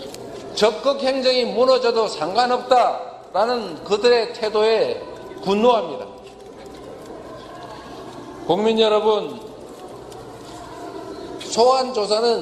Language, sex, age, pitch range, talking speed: English, male, 50-69, 210-265 Hz, 50 wpm